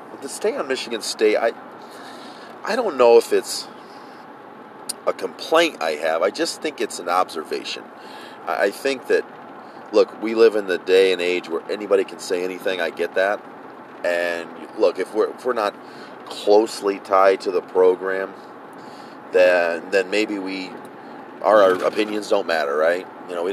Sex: male